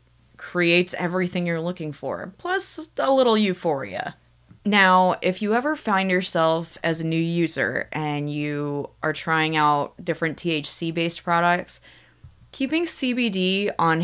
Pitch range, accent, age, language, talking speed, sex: 160-200 Hz, American, 20-39, English, 130 wpm, female